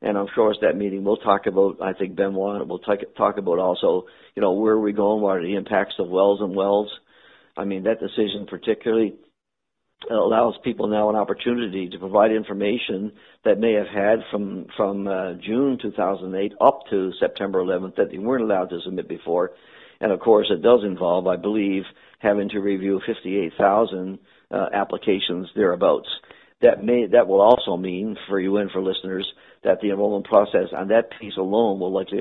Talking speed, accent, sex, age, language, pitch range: 185 wpm, American, male, 50-69, English, 95-110 Hz